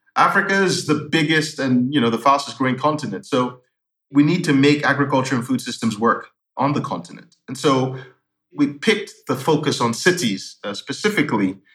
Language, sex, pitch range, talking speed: English, male, 120-150 Hz, 170 wpm